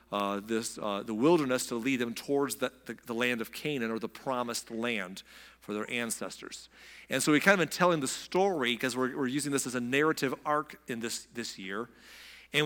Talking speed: 215 wpm